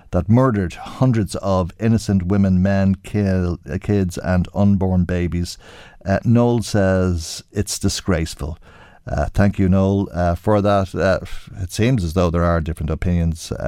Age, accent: 50-69, Irish